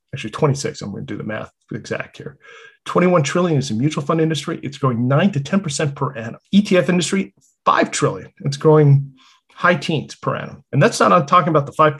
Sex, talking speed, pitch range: male, 205 wpm, 120-155 Hz